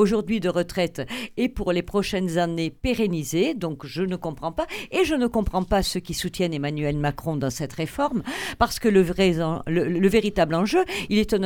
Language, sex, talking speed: French, female, 190 wpm